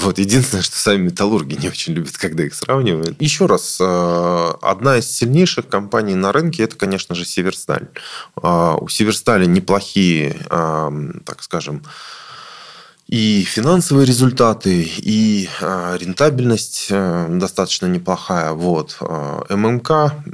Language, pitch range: Russian, 85-125 Hz